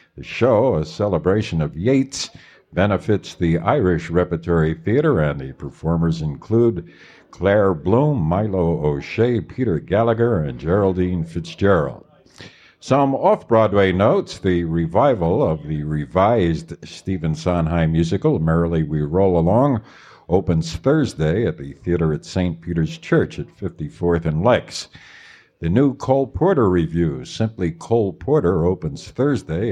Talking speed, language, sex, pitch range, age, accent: 125 wpm, English, male, 80-110 Hz, 60-79, American